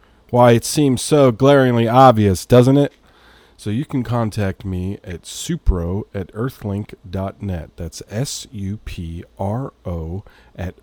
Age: 40-59